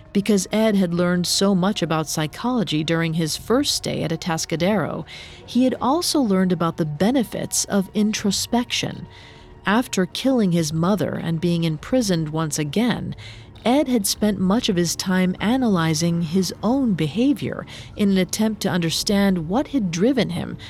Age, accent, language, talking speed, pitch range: 40-59, American, English, 150 wpm, 170-225 Hz